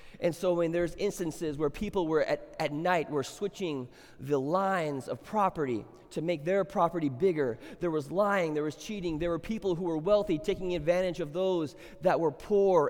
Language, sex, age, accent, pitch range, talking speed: English, male, 20-39, American, 160-210 Hz, 190 wpm